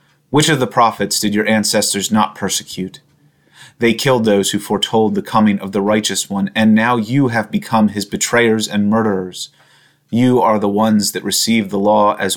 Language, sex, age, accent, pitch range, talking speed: English, male, 30-49, American, 100-110 Hz, 185 wpm